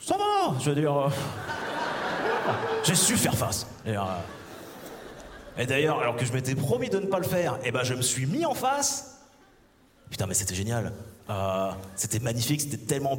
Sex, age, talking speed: male, 30-49, 190 wpm